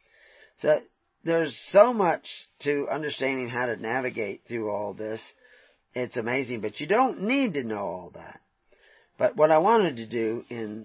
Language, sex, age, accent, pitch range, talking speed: English, male, 40-59, American, 110-140 Hz, 160 wpm